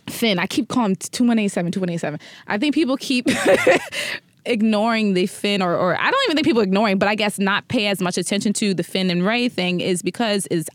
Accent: American